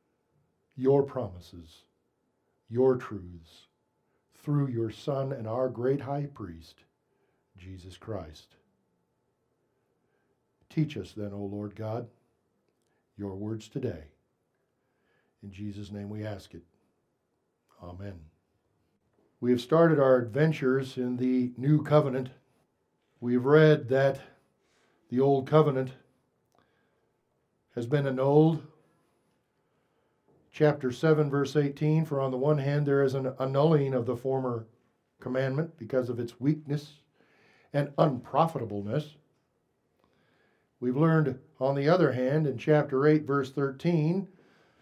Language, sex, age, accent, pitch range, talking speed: English, male, 60-79, American, 120-155 Hz, 110 wpm